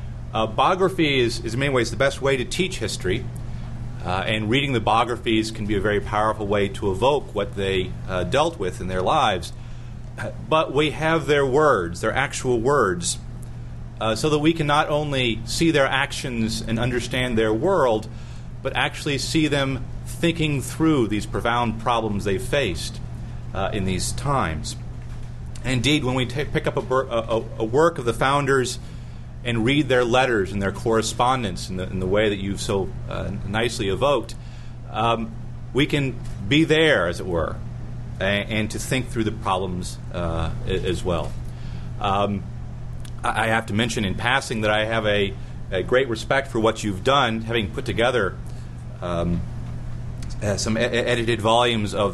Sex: male